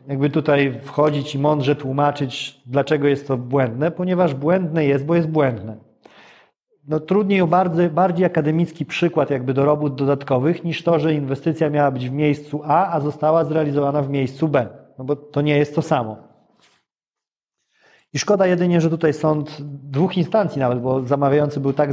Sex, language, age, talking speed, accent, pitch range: male, Polish, 40-59, 170 wpm, native, 135-165 Hz